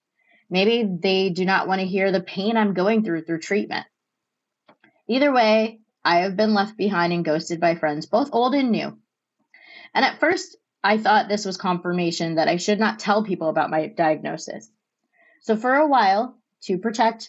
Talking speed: 180 wpm